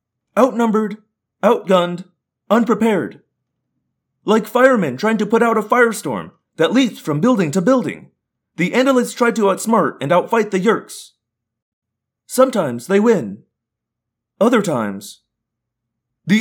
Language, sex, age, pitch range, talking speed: English, male, 30-49, 170-245 Hz, 115 wpm